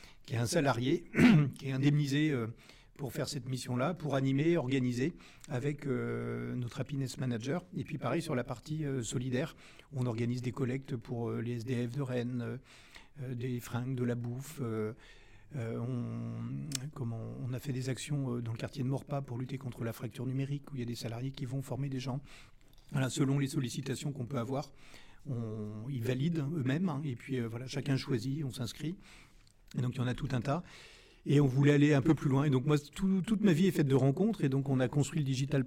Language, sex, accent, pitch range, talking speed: French, male, French, 125-145 Hz, 200 wpm